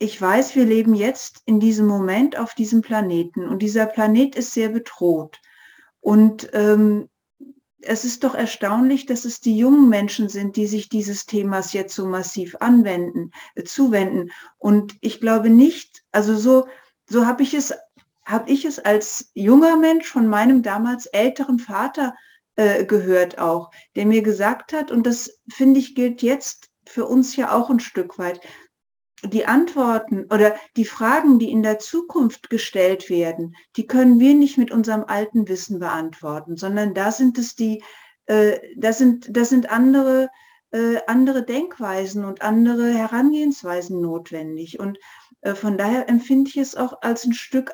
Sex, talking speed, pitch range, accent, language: female, 160 wpm, 210-260 Hz, German, German